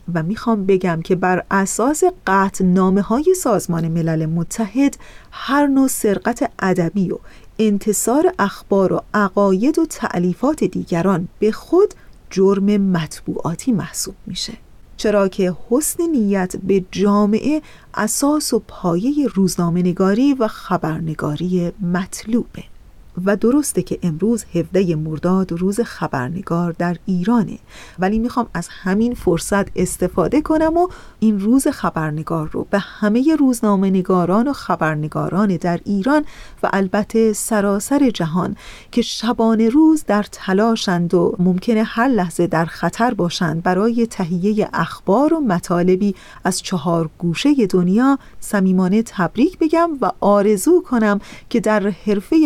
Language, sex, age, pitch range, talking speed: Persian, female, 40-59, 180-230 Hz, 120 wpm